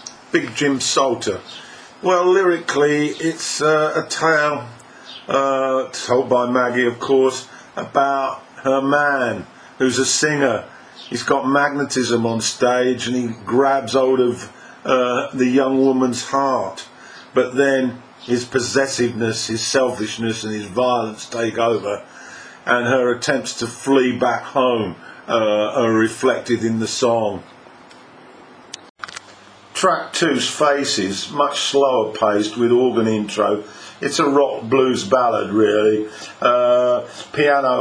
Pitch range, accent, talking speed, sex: 115-135 Hz, British, 120 wpm, male